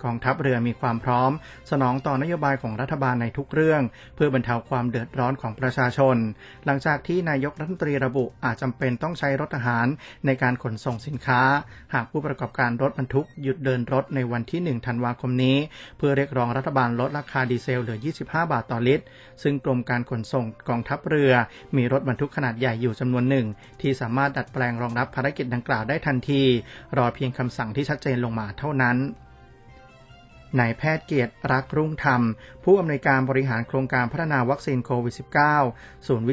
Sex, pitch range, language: male, 120-140 Hz, Thai